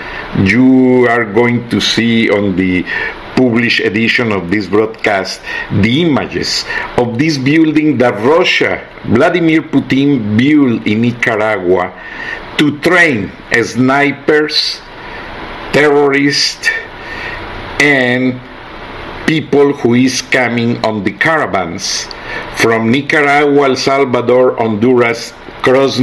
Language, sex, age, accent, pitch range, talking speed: Spanish, male, 50-69, Mexican, 115-155 Hz, 95 wpm